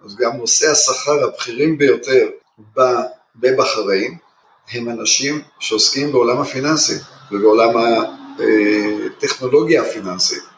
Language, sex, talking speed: Hebrew, male, 85 wpm